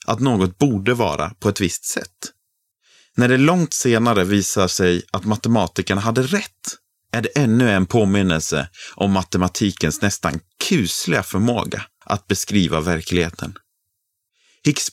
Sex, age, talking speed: male, 30-49, 130 wpm